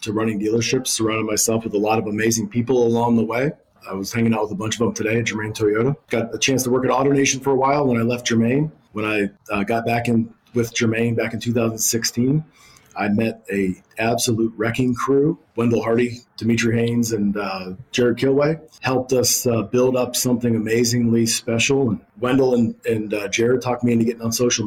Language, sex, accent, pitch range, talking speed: English, male, American, 110-125 Hz, 210 wpm